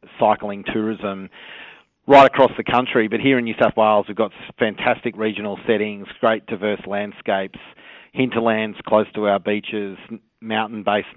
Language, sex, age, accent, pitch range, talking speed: English, male, 30-49, Australian, 105-115 Hz, 140 wpm